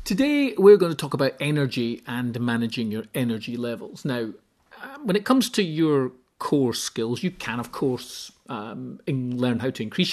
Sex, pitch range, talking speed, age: male, 125-175 Hz, 180 wpm, 40-59